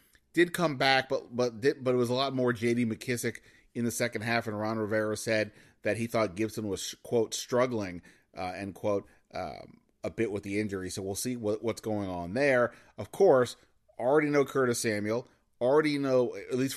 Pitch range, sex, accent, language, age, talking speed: 110-125 Hz, male, American, English, 30-49, 195 wpm